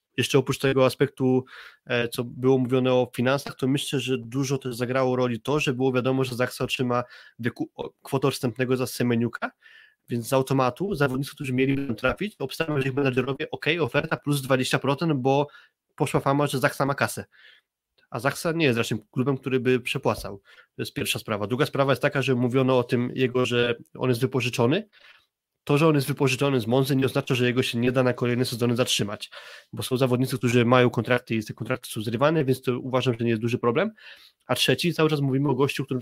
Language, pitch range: Polish, 120-135 Hz